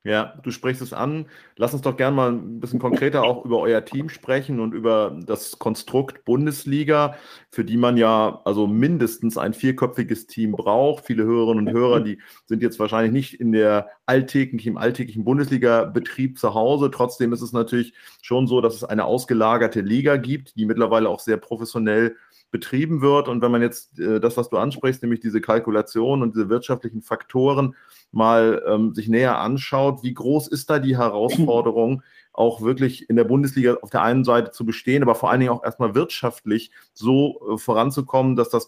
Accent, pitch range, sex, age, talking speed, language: German, 115-130 Hz, male, 30-49, 185 wpm, German